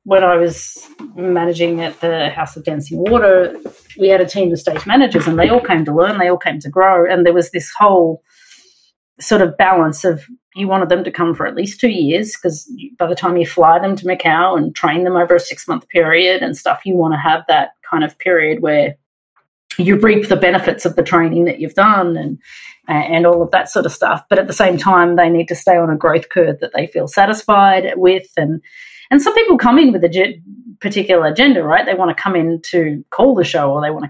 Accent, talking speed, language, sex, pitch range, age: Australian, 240 wpm, English, female, 170-200 Hz, 30-49